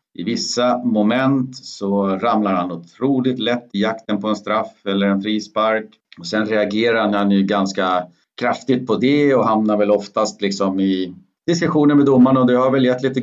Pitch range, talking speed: 100-125 Hz, 175 wpm